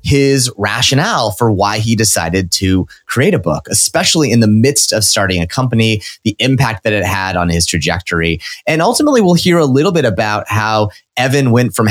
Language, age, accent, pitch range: English, 30-49, American, 100-130 Hz